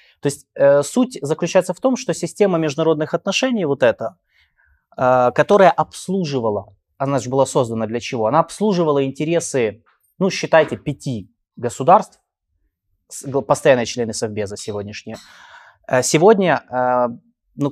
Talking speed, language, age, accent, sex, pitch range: 125 wpm, Ukrainian, 20-39, native, male, 115-155 Hz